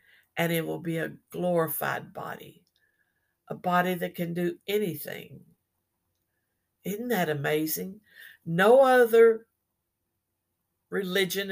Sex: female